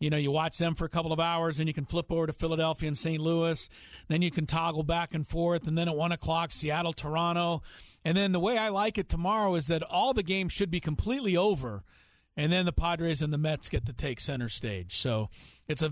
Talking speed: 250 wpm